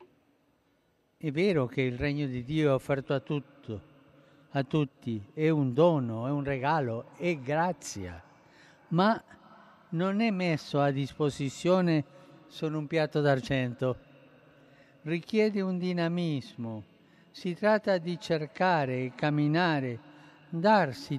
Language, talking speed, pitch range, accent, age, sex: Italian, 115 wpm, 135-170 Hz, native, 50-69, male